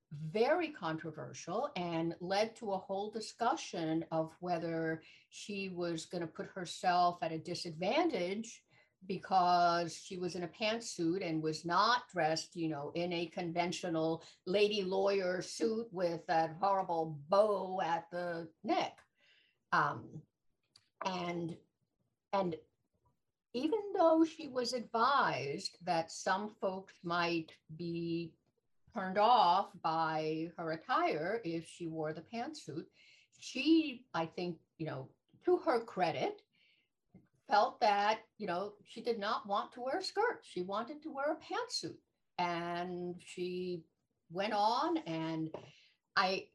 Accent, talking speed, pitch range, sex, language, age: American, 130 wpm, 165-210 Hz, female, English, 60-79